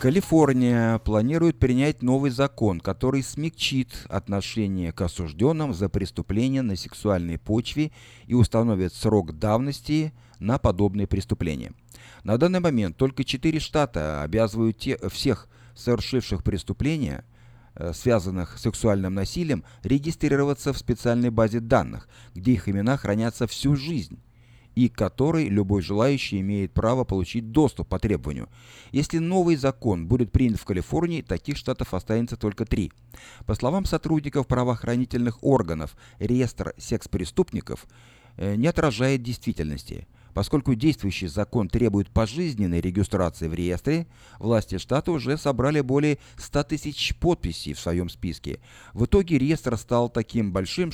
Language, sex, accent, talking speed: Russian, male, native, 125 wpm